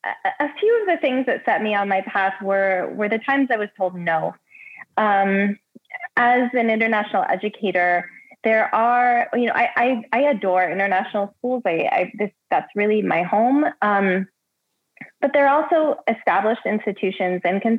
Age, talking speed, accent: 20-39, 165 wpm, American